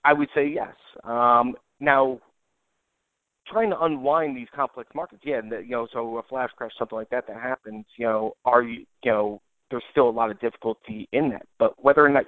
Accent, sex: American, male